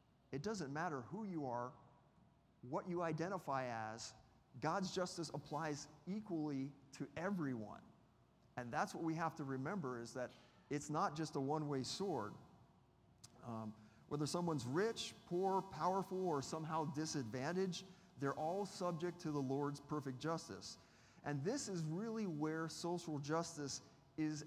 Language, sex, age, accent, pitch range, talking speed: English, male, 40-59, American, 135-180 Hz, 135 wpm